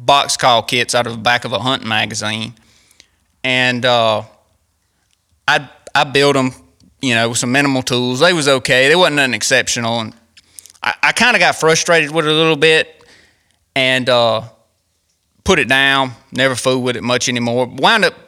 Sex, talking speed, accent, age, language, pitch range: male, 180 wpm, American, 20-39, English, 115-145 Hz